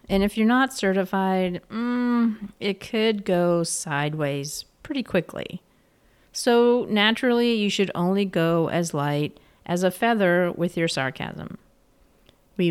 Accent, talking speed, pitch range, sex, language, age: American, 125 wpm, 155-205 Hz, female, English, 40-59